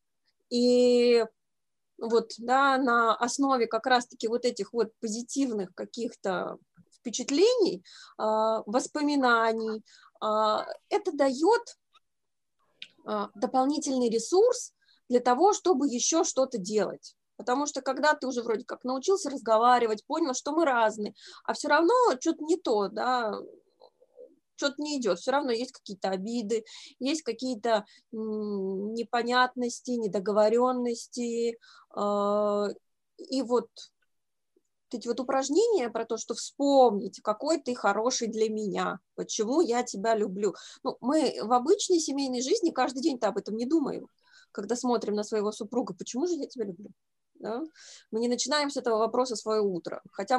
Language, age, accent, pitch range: Russian, 20-39, native, 220-280 Hz